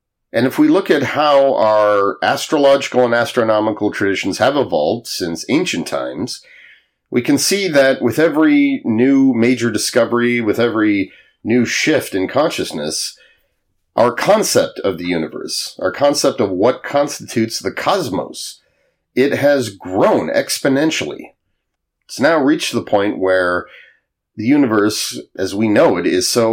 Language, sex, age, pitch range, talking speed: English, male, 40-59, 95-135 Hz, 140 wpm